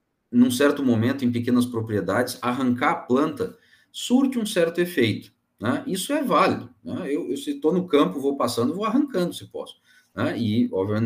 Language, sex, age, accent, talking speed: Portuguese, male, 40-59, Brazilian, 180 wpm